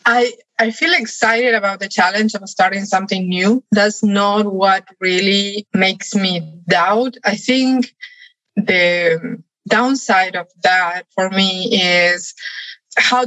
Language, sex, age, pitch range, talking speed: English, female, 20-39, 185-225 Hz, 125 wpm